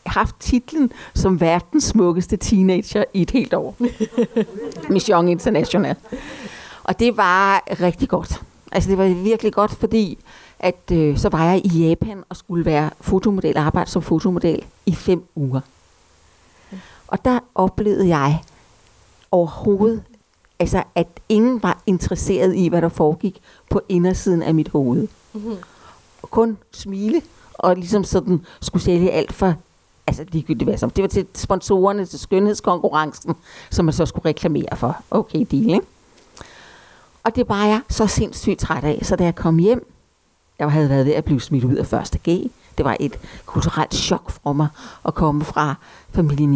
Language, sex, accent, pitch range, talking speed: Danish, female, native, 155-200 Hz, 155 wpm